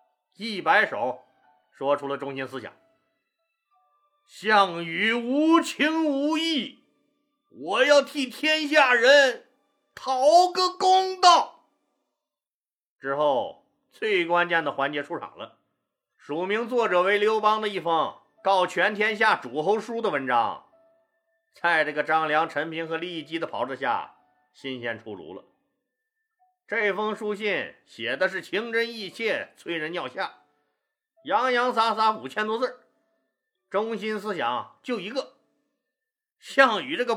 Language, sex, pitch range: Chinese, male, 190-290 Hz